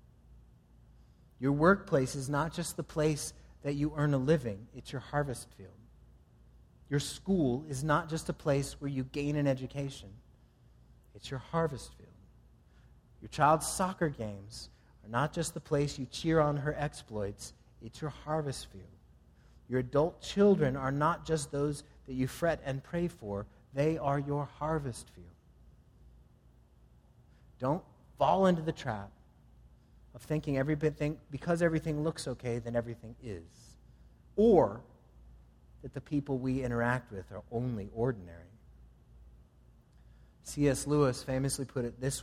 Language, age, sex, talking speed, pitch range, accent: English, 30-49, male, 140 wpm, 105-145 Hz, American